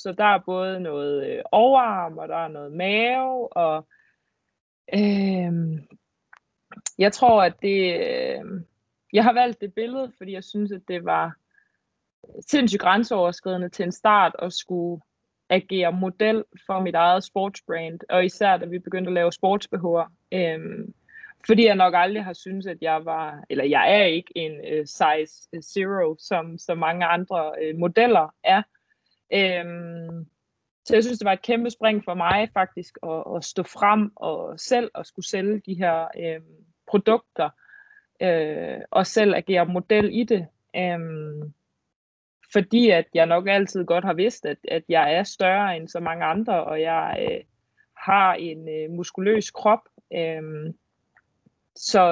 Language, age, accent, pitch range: Danish, 20-39, native, 170-215 Hz